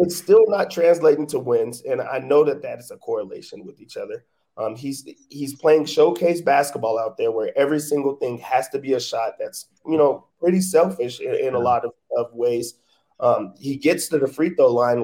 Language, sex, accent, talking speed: English, male, American, 215 wpm